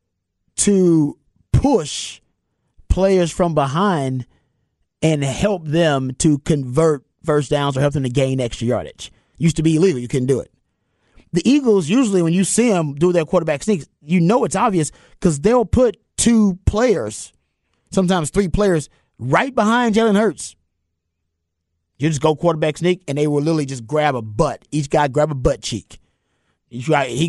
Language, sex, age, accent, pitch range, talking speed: English, male, 30-49, American, 145-195 Hz, 165 wpm